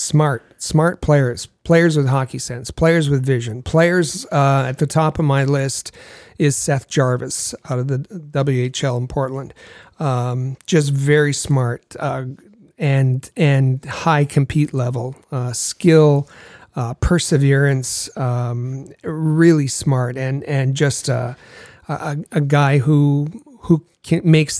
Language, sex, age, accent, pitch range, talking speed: English, male, 40-59, American, 135-155 Hz, 135 wpm